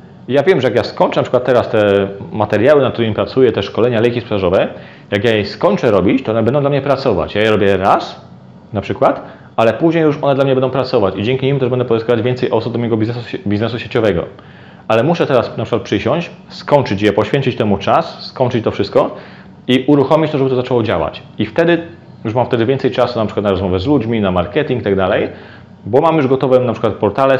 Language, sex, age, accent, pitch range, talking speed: Polish, male, 30-49, native, 110-130 Hz, 225 wpm